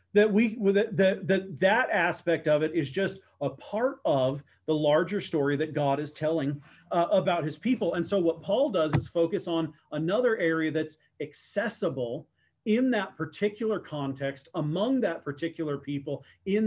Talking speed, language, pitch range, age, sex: 165 wpm, English, 140-195 Hz, 40-59, male